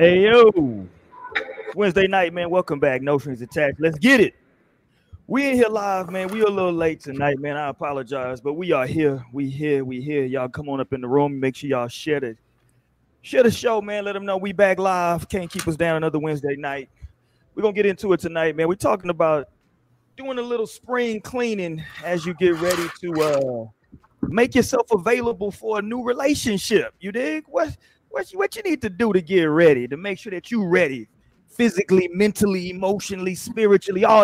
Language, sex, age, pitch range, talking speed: English, male, 30-49, 140-200 Hz, 200 wpm